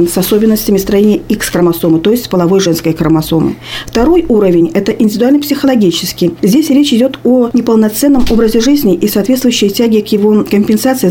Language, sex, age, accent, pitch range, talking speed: Russian, female, 40-59, native, 190-245 Hz, 145 wpm